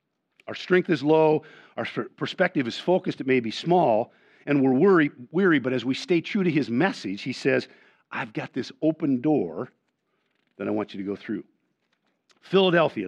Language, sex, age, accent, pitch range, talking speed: English, male, 50-69, American, 125-175 Hz, 175 wpm